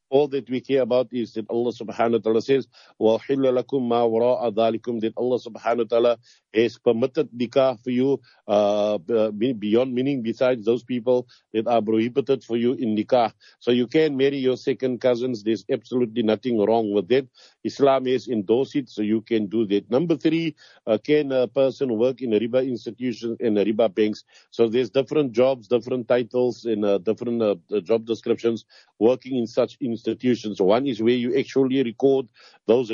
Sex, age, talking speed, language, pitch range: male, 50-69, 185 wpm, English, 110-125 Hz